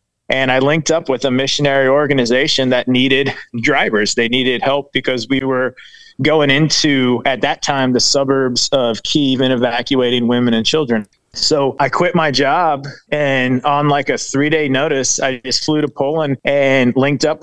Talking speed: 170 wpm